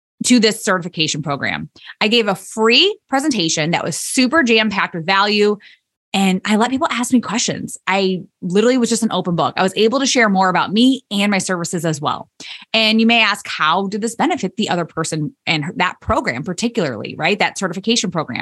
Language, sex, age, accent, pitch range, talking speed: English, female, 20-39, American, 185-260 Hz, 200 wpm